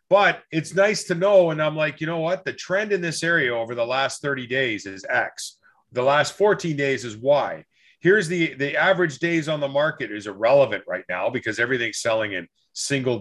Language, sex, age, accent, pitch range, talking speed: English, male, 40-59, American, 130-165 Hz, 210 wpm